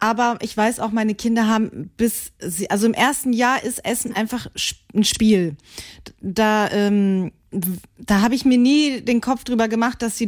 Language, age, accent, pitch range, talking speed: German, 20-39, German, 205-245 Hz, 180 wpm